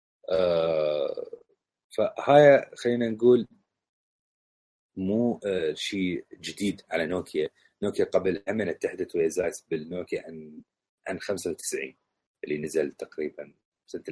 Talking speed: 100 wpm